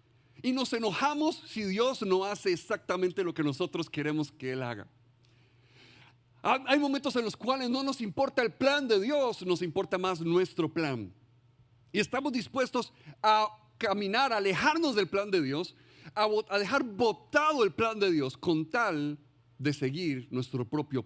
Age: 50-69